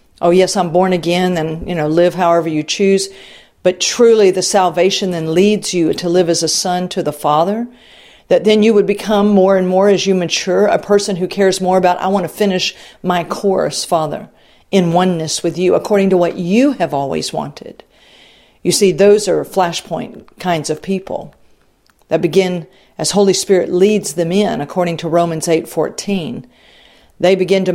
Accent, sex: American, female